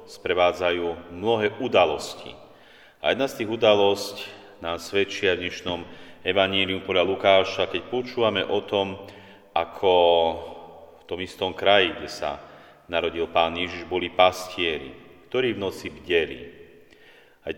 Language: Slovak